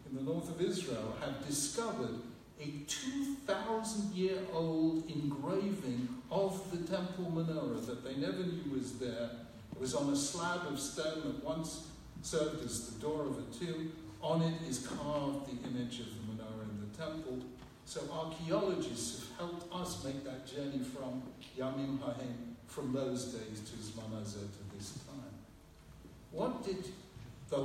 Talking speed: 155 wpm